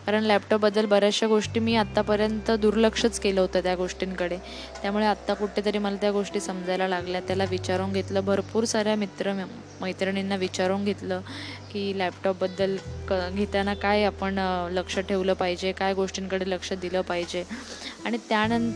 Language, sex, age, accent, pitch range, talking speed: Marathi, female, 10-29, native, 180-210 Hz, 100 wpm